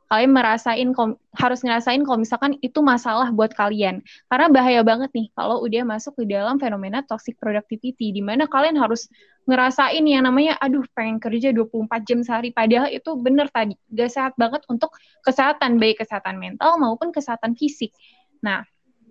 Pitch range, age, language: 220-275 Hz, 10-29, Indonesian